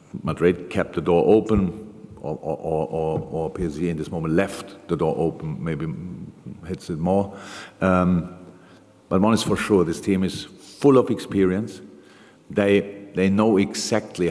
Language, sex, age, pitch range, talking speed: English, male, 50-69, 90-100 Hz, 160 wpm